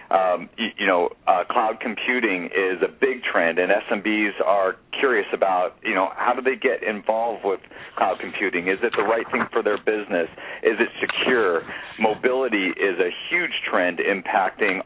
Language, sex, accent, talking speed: English, male, American, 175 wpm